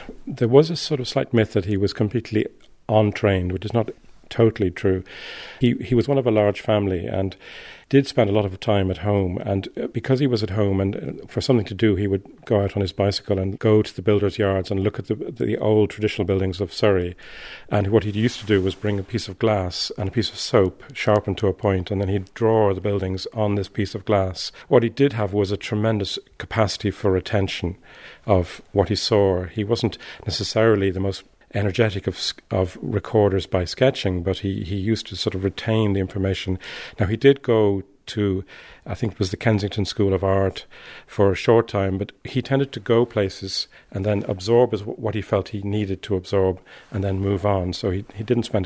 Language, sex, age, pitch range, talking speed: English, male, 40-59, 95-110 Hz, 220 wpm